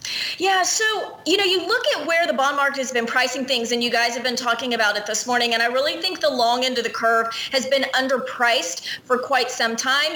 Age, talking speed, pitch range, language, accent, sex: 30-49, 250 wpm, 230-285 Hz, English, American, female